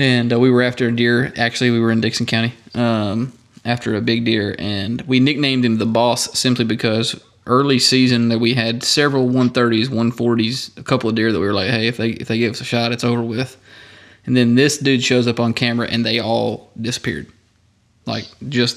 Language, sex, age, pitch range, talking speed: English, male, 20-39, 115-125 Hz, 215 wpm